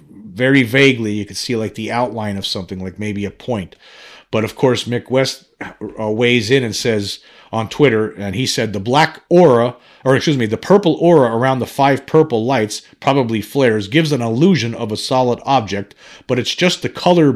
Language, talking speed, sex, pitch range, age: English, 195 wpm, male, 105-135 Hz, 40-59